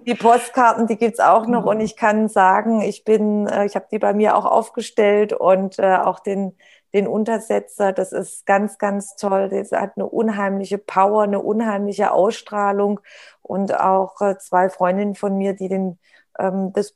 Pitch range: 195-225 Hz